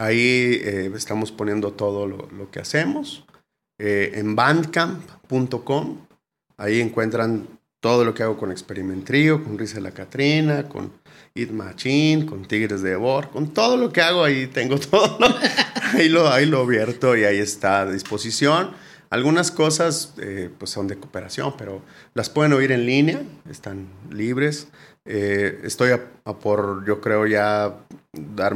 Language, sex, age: Spanish, male, 30-49